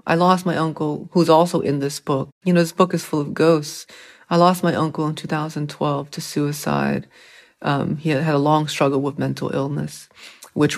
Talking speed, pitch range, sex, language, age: 195 wpm, 150-175 Hz, female, English, 30-49